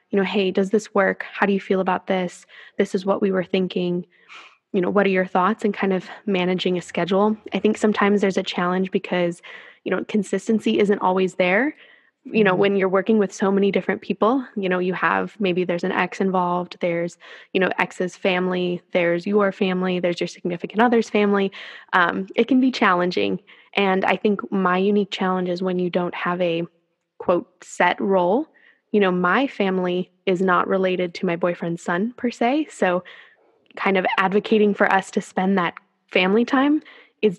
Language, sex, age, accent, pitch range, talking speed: English, female, 20-39, American, 180-210 Hz, 195 wpm